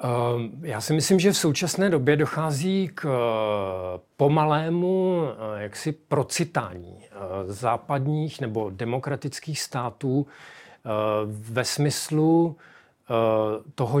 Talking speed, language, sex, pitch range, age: 75 wpm, Czech, male, 120-150 Hz, 40-59